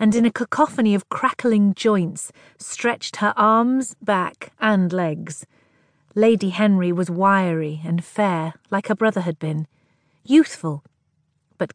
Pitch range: 160-210 Hz